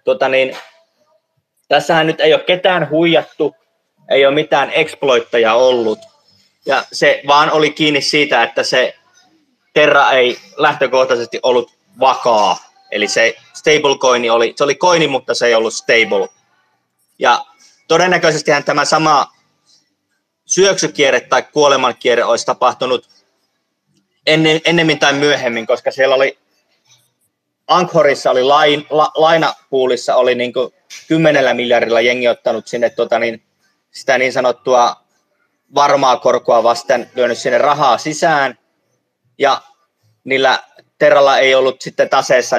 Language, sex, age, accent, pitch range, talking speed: Finnish, male, 30-49, native, 130-180 Hz, 115 wpm